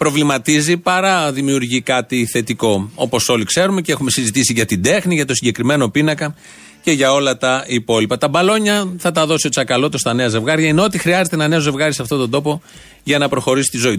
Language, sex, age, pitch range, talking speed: Greek, male, 40-59, 125-175 Hz, 200 wpm